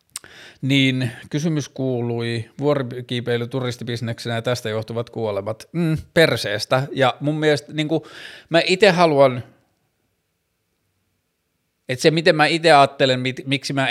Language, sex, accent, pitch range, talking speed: Finnish, male, native, 115-135 Hz, 115 wpm